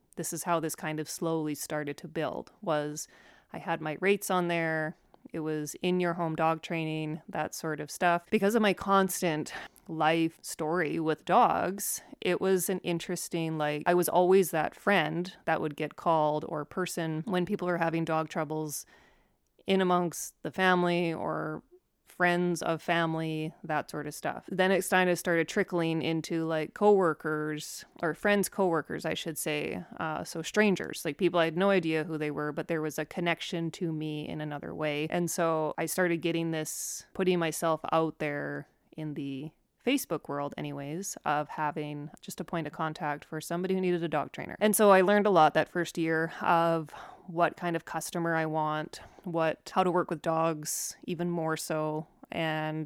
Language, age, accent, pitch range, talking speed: English, 30-49, American, 155-180 Hz, 180 wpm